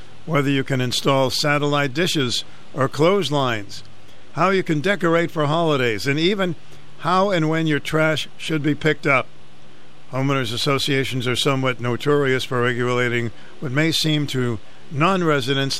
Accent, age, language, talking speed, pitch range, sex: American, 60-79, English, 140 wpm, 125-160 Hz, male